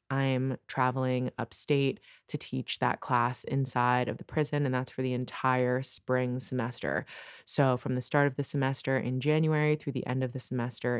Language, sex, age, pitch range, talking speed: English, female, 20-39, 130-160 Hz, 180 wpm